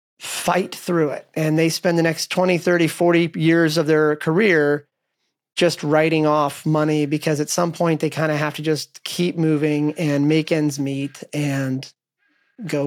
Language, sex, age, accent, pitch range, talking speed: English, male, 30-49, American, 155-180 Hz, 175 wpm